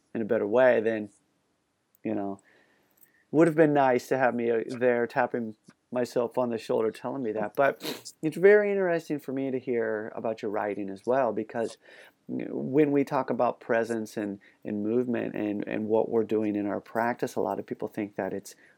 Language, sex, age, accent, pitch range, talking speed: English, male, 30-49, American, 105-130 Hz, 190 wpm